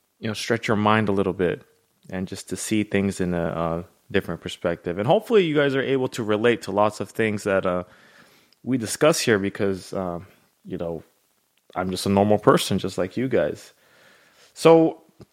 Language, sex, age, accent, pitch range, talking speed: English, male, 30-49, American, 95-115 Hz, 190 wpm